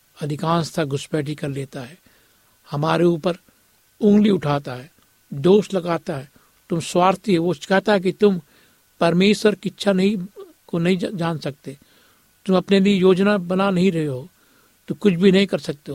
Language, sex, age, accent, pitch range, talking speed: Hindi, male, 60-79, native, 155-180 Hz, 160 wpm